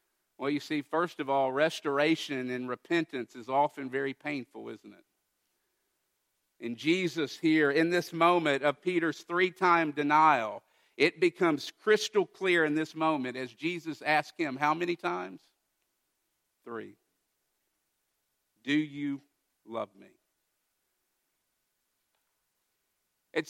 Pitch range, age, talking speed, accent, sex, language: 155-215 Hz, 50-69, 115 wpm, American, male, English